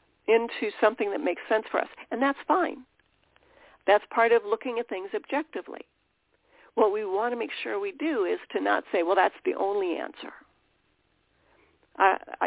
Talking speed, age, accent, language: 170 wpm, 50-69, American, English